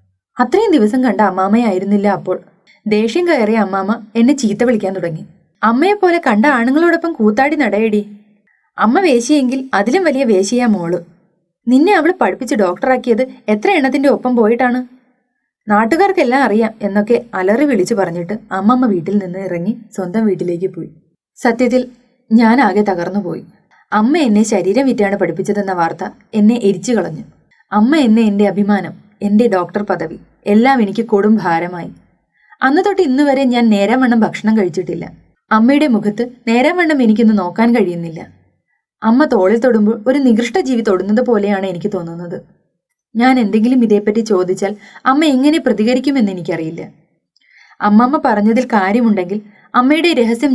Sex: female